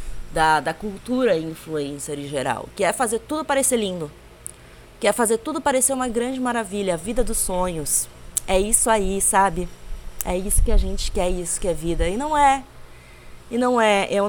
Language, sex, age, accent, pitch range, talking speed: Portuguese, female, 20-39, Brazilian, 175-250 Hz, 195 wpm